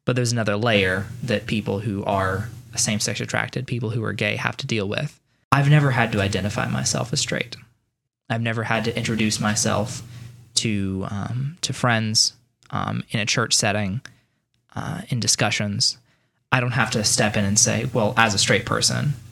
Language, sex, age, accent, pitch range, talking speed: English, male, 20-39, American, 105-125 Hz, 175 wpm